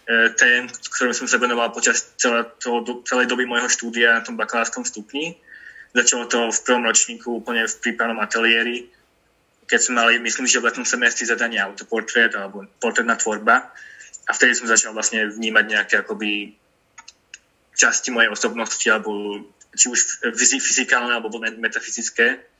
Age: 20-39